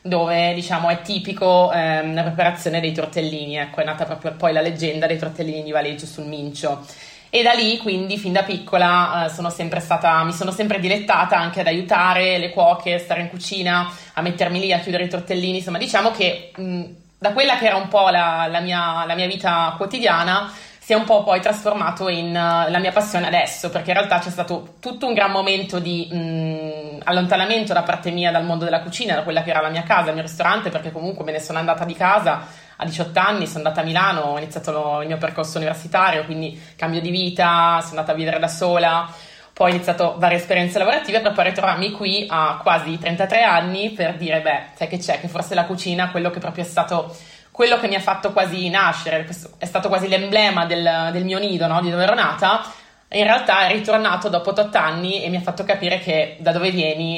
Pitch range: 160-185 Hz